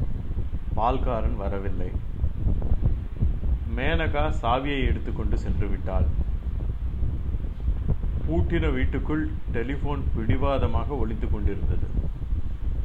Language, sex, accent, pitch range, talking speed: Tamil, male, native, 75-100 Hz, 60 wpm